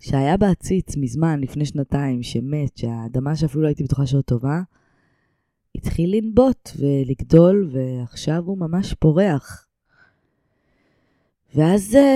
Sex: female